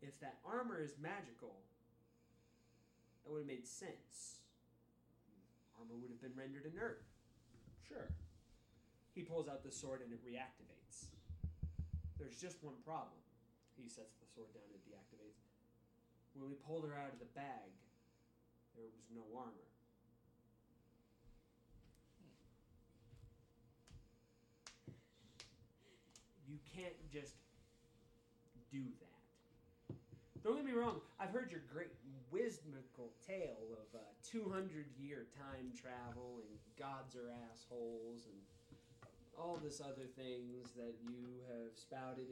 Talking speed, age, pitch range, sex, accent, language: 115 wpm, 30-49, 115-135 Hz, male, American, English